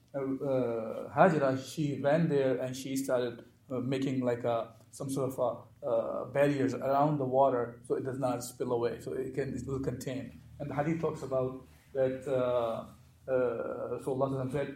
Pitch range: 130-145 Hz